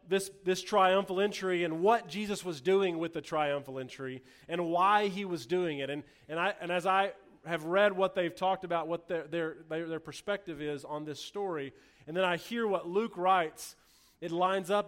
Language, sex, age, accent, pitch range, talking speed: English, male, 30-49, American, 140-185 Hz, 200 wpm